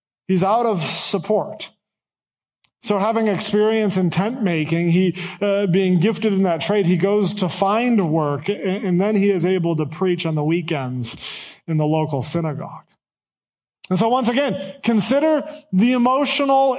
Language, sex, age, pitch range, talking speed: English, male, 30-49, 170-225 Hz, 155 wpm